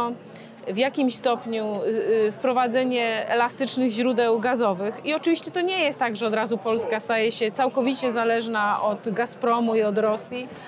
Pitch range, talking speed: 220-255 Hz, 145 wpm